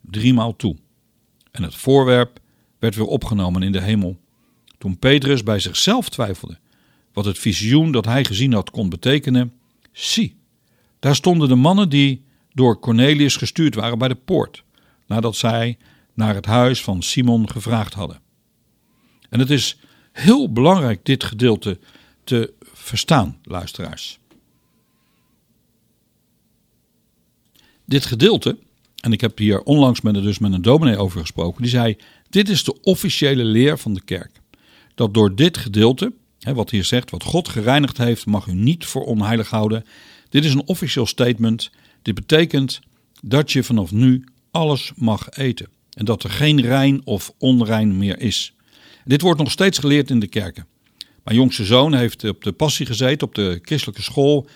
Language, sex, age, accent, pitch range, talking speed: Dutch, male, 60-79, Dutch, 110-140 Hz, 155 wpm